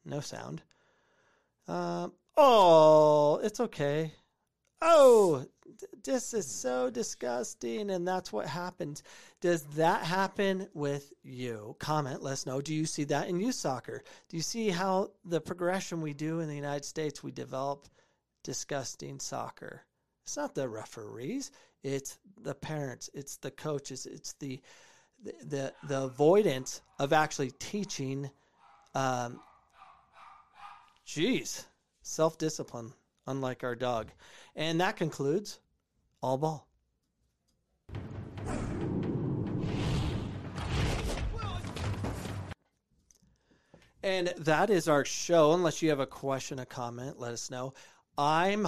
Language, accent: English, American